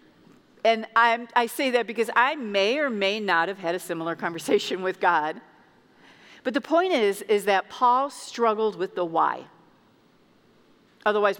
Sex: female